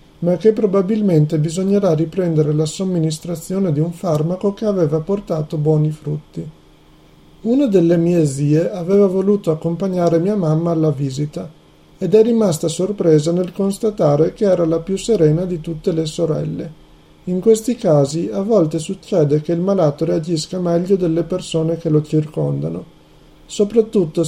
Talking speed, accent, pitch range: 145 wpm, native, 155-190 Hz